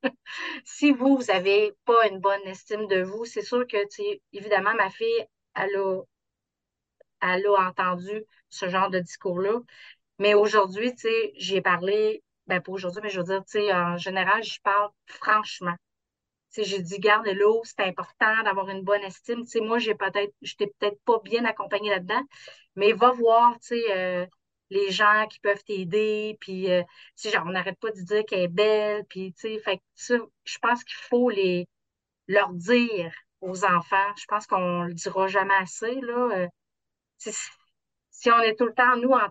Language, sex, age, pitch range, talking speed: French, female, 30-49, 190-230 Hz, 185 wpm